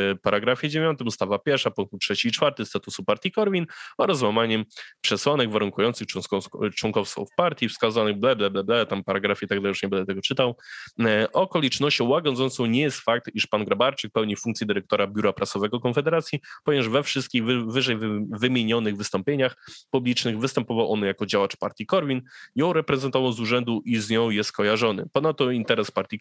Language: Polish